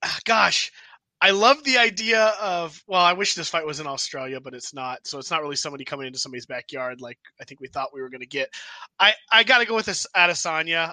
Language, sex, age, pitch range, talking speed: English, male, 20-39, 140-170 Hz, 235 wpm